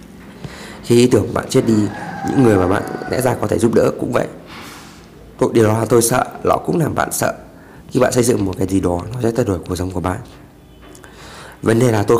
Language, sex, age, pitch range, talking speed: Vietnamese, male, 20-39, 90-115 Hz, 235 wpm